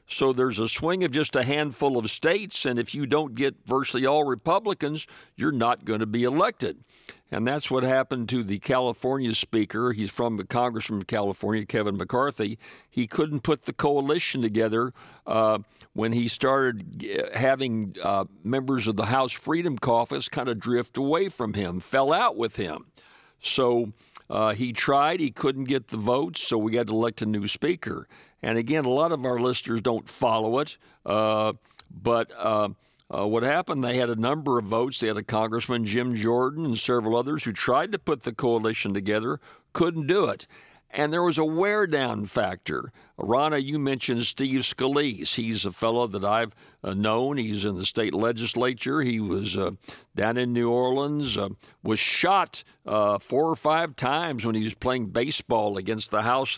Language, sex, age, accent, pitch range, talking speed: English, male, 50-69, American, 110-135 Hz, 180 wpm